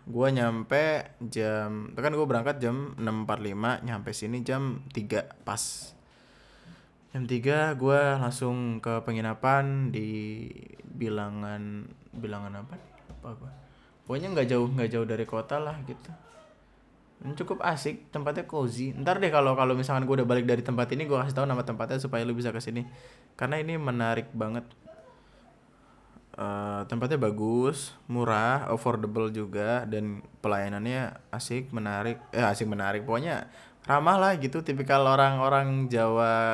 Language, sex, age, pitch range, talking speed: Indonesian, male, 20-39, 110-135 Hz, 135 wpm